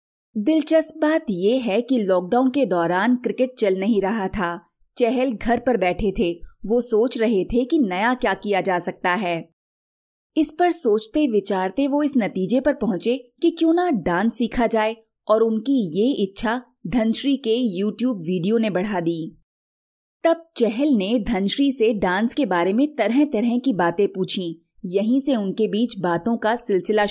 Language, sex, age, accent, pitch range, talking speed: Hindi, female, 20-39, native, 195-255 Hz, 170 wpm